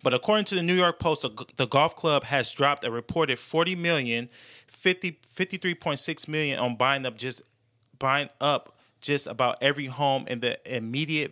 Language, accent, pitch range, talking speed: English, American, 115-140 Hz, 170 wpm